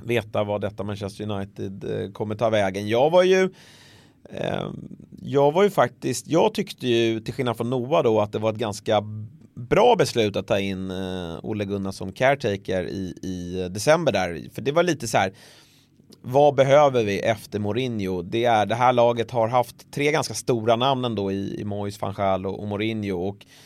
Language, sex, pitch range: Swedish, male, 105-130 Hz